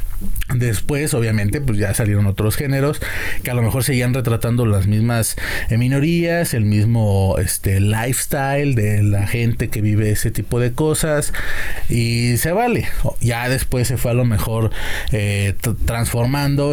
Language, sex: Spanish, male